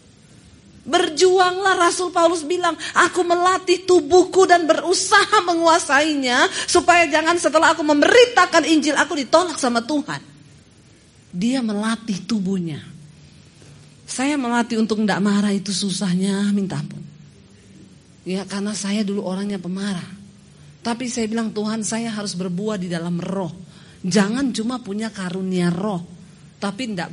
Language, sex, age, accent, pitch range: Chinese, female, 40-59, Indonesian, 185-280 Hz